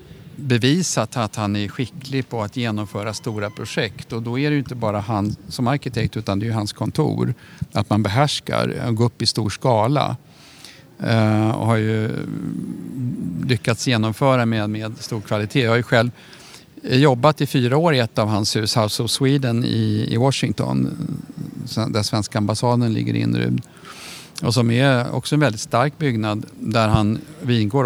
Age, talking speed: 50-69, 170 wpm